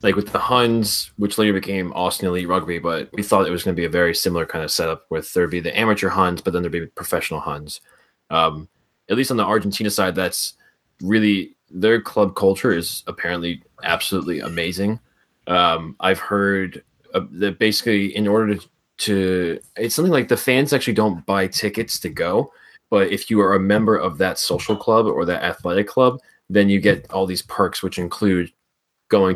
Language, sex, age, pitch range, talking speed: English, male, 20-39, 85-105 Hz, 205 wpm